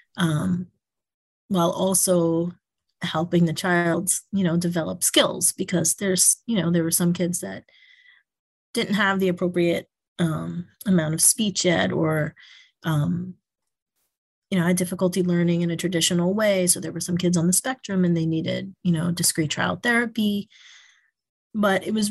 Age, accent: 30-49, American